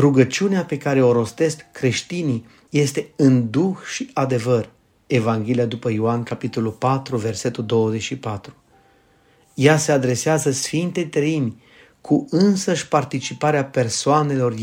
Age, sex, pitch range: 30-49, male, 120-145 Hz